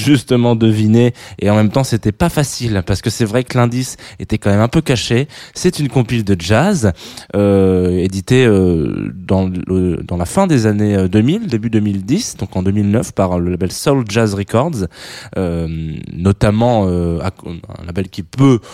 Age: 20-39